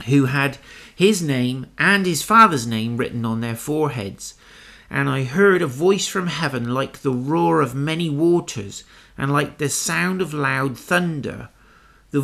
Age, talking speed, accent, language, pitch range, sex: 50-69, 160 wpm, British, English, 125-165 Hz, male